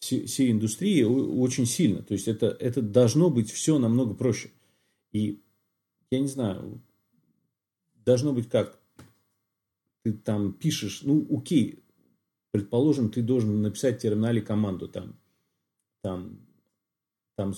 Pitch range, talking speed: 105-130 Hz, 115 wpm